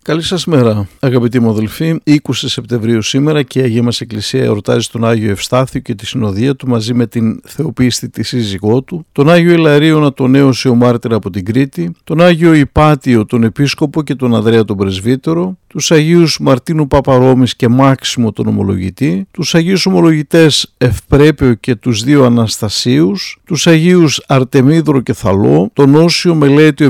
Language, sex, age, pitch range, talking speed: Greek, male, 50-69, 120-165 Hz, 160 wpm